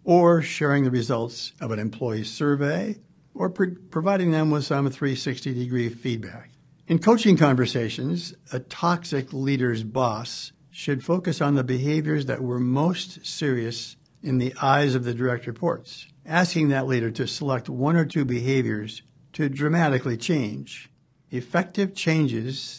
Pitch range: 125-155 Hz